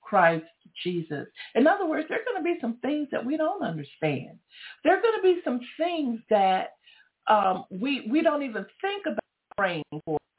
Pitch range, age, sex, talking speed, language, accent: 185-270 Hz, 50-69, female, 190 wpm, English, American